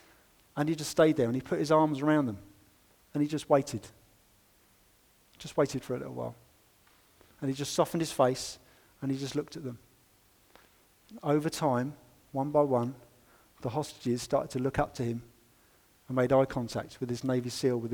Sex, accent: male, British